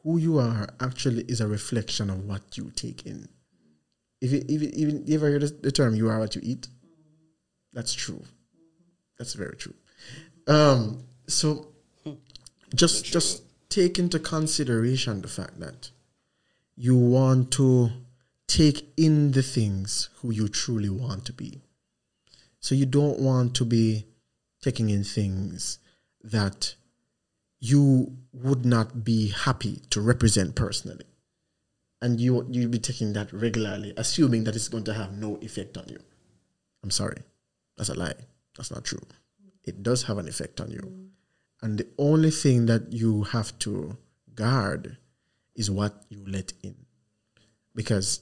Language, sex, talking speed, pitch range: English, male, 145 wpm, 110-145 Hz